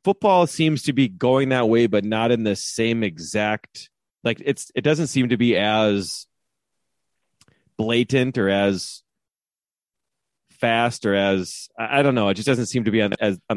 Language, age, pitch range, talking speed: English, 30-49, 100-130 Hz, 170 wpm